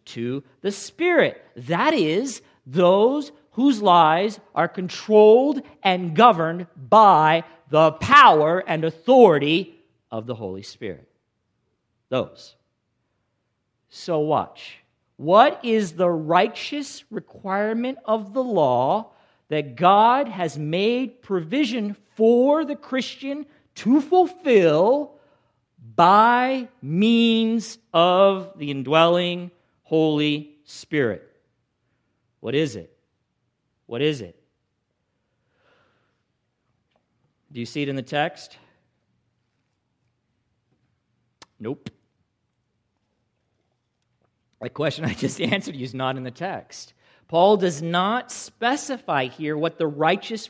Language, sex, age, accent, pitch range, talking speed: English, male, 50-69, American, 135-225 Hz, 95 wpm